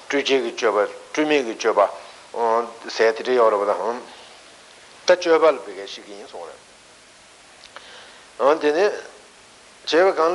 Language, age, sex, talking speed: Italian, 60-79, male, 130 wpm